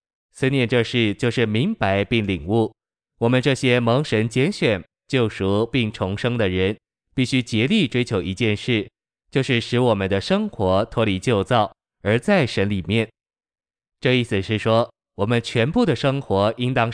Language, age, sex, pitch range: Chinese, 20-39, male, 105-125 Hz